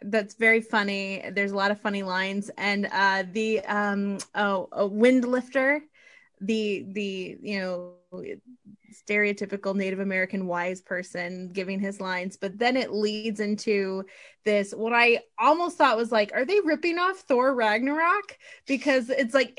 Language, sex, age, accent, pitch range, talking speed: English, female, 20-39, American, 215-300 Hz, 155 wpm